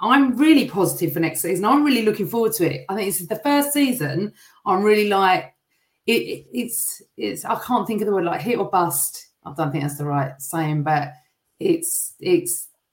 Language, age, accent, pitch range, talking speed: English, 30-49, British, 170-230 Hz, 215 wpm